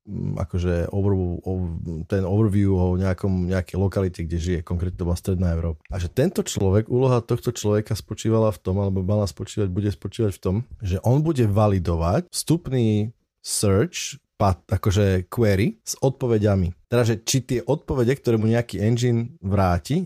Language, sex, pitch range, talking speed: Slovak, male, 100-120 Hz, 145 wpm